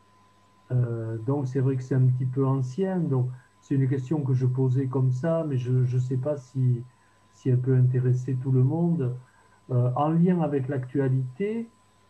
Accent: French